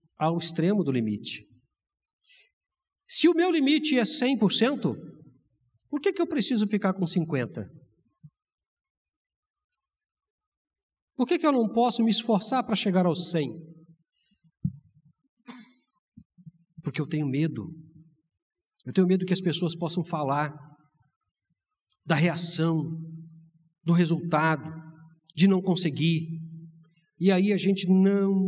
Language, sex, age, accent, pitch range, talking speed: Portuguese, male, 50-69, Brazilian, 140-190 Hz, 115 wpm